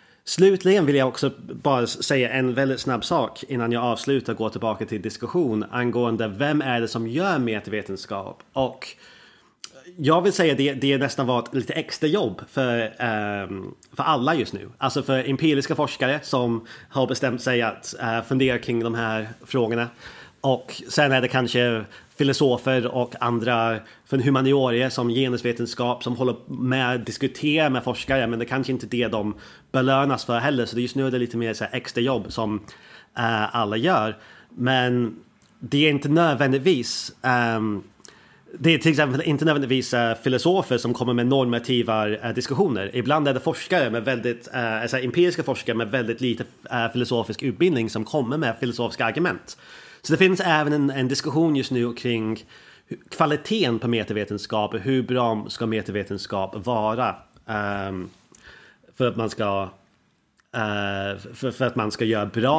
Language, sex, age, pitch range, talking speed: Swedish, male, 30-49, 115-135 Hz, 155 wpm